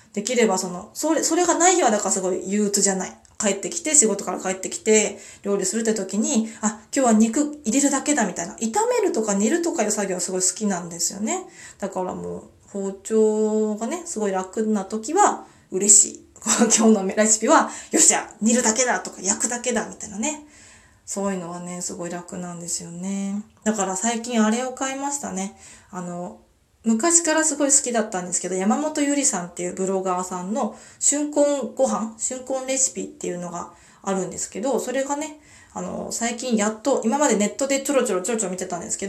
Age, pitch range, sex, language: 20-39, 185-245 Hz, female, Japanese